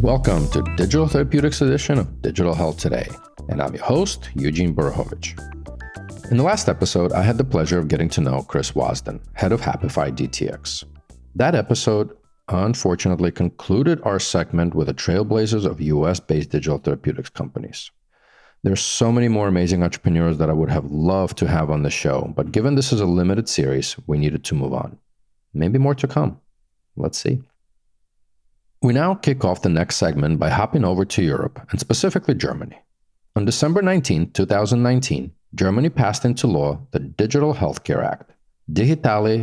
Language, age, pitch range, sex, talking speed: English, 40-59, 80-125 Hz, male, 165 wpm